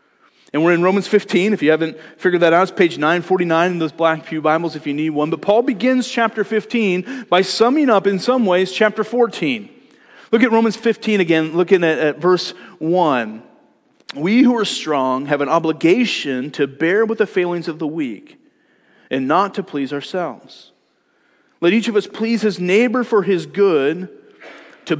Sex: male